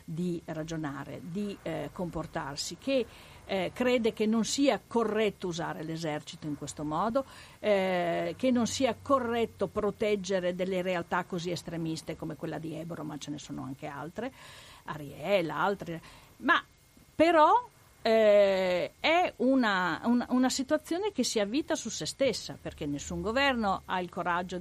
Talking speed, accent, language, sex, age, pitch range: 145 wpm, native, Italian, female, 50-69, 170-235 Hz